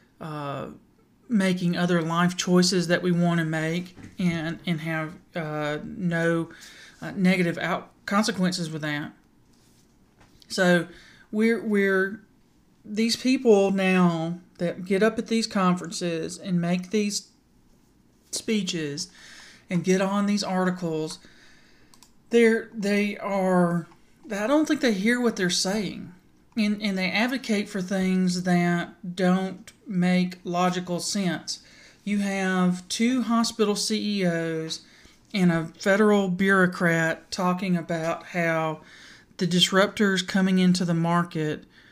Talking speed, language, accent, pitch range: 115 wpm, English, American, 170-200 Hz